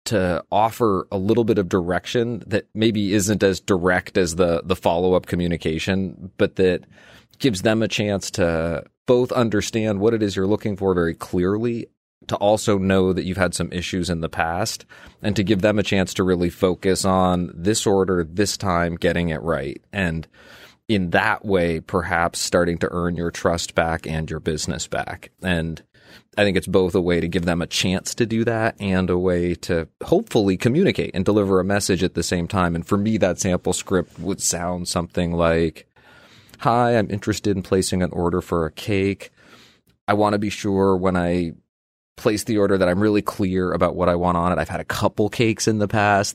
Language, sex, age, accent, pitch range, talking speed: English, male, 30-49, American, 85-100 Hz, 200 wpm